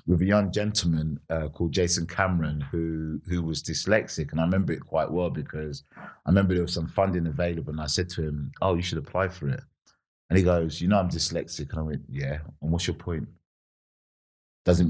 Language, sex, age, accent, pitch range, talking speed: English, male, 30-49, British, 80-95 Hz, 215 wpm